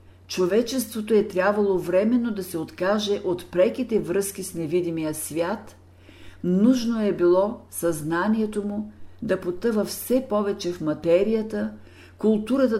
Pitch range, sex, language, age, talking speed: 155-215 Hz, female, Bulgarian, 50-69, 115 wpm